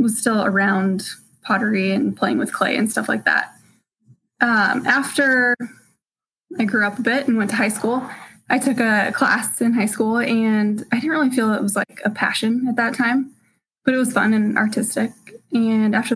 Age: 10-29